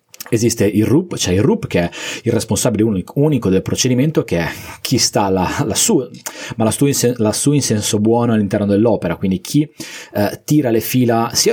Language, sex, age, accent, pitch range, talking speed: Italian, male, 30-49, native, 95-120 Hz, 175 wpm